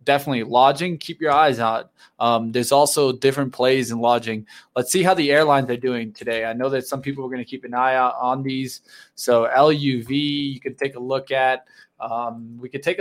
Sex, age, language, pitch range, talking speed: male, 20-39, English, 125-140 Hz, 215 wpm